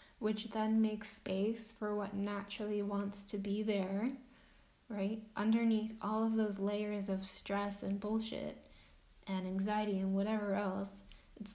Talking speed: 140 wpm